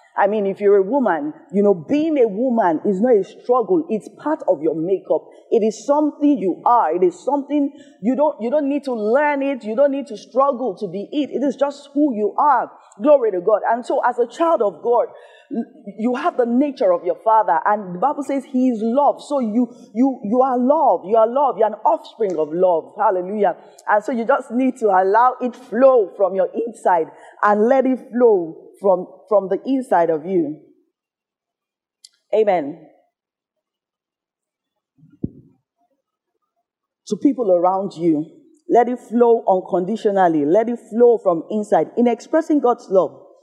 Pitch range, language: 205-290 Hz, English